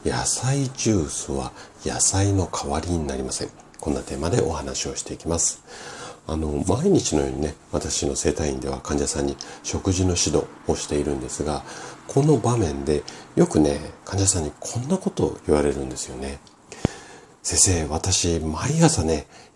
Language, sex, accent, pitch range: Japanese, male, native, 70-100 Hz